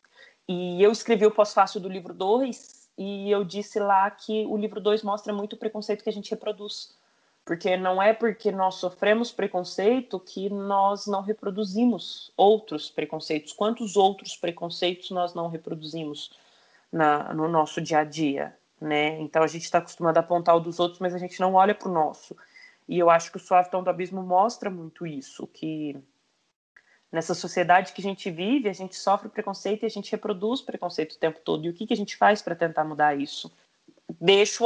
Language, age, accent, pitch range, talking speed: Portuguese, 20-39, Brazilian, 165-210 Hz, 190 wpm